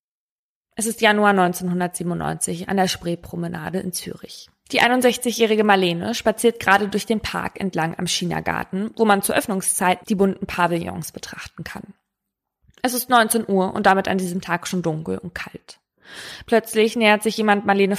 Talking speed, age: 155 wpm, 20-39